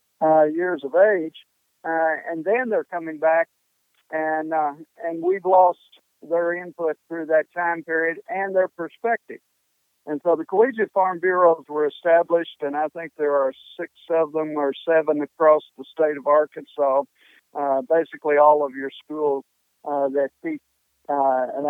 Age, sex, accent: 50-69, male, American